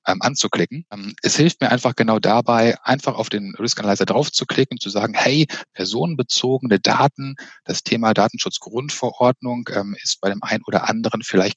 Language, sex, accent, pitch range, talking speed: German, male, German, 105-130 Hz, 150 wpm